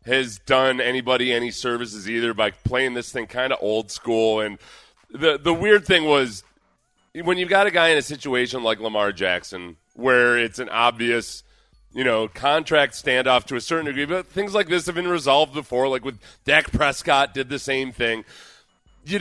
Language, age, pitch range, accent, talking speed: English, 30-49, 115-160 Hz, American, 185 wpm